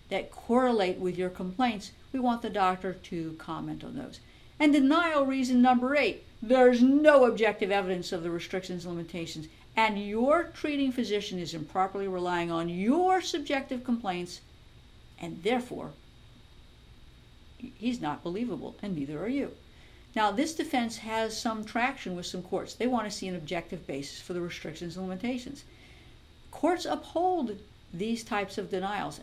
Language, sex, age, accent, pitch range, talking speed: English, female, 50-69, American, 175-245 Hz, 150 wpm